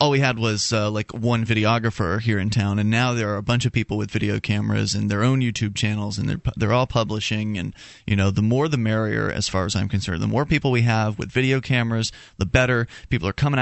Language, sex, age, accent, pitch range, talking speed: English, male, 30-49, American, 110-140 Hz, 250 wpm